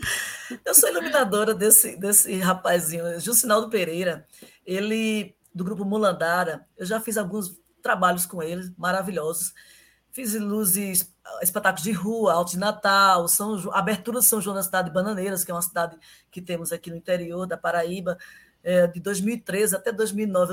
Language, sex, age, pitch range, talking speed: Portuguese, female, 20-39, 185-255 Hz, 160 wpm